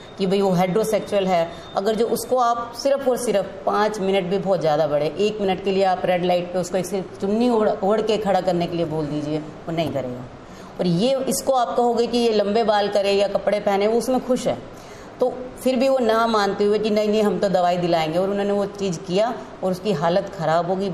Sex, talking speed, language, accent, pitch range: female, 230 wpm, Hindi, native, 175-215 Hz